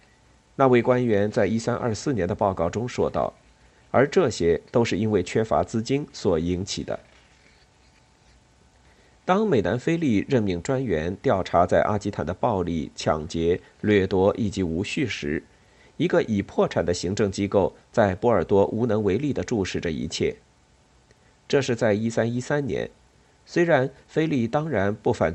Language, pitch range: Chinese, 90-125 Hz